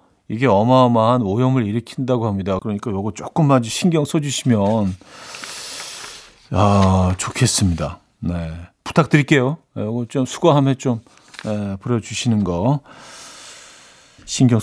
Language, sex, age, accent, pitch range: Korean, male, 40-59, native, 105-150 Hz